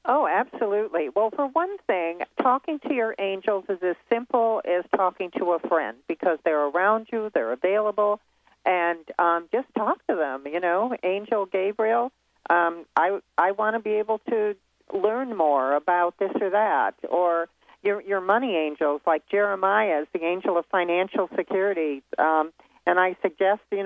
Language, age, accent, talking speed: English, 40-59, American, 165 wpm